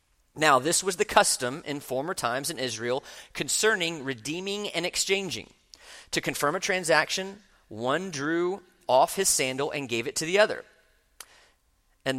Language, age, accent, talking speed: English, 40-59, American, 150 wpm